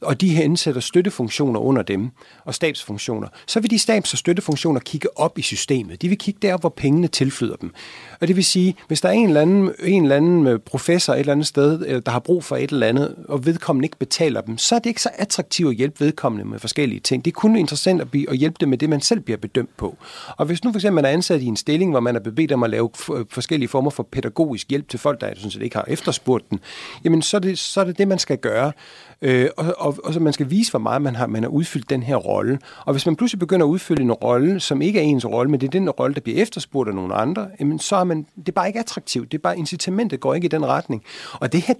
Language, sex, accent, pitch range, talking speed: Danish, male, native, 135-180 Hz, 265 wpm